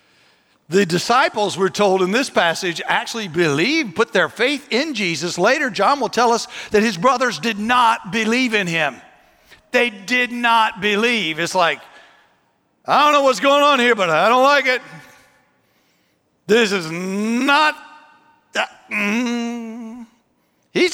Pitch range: 190-255 Hz